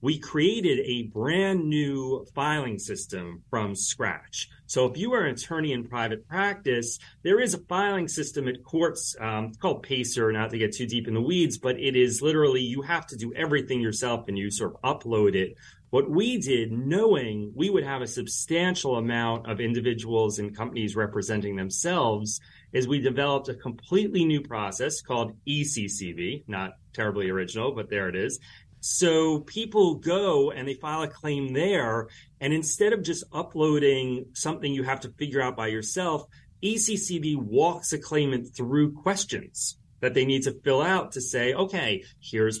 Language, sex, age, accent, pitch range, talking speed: English, male, 30-49, American, 115-155 Hz, 170 wpm